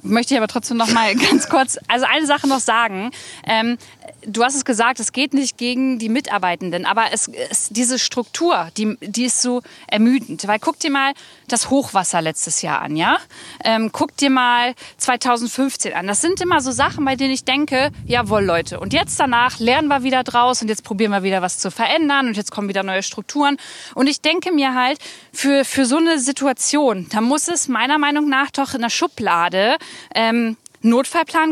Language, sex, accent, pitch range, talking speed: German, female, German, 225-280 Hz, 195 wpm